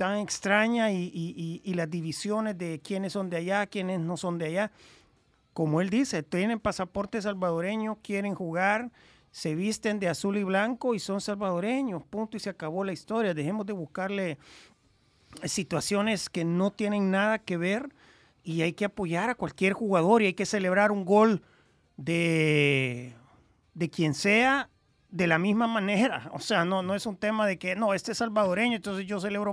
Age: 40-59